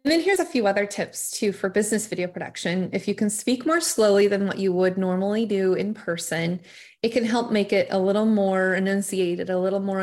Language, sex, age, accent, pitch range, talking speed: English, female, 20-39, American, 185-230 Hz, 225 wpm